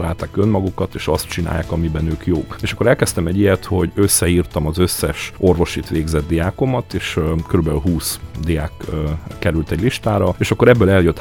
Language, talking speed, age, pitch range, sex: Hungarian, 165 wpm, 40-59, 80-95 Hz, male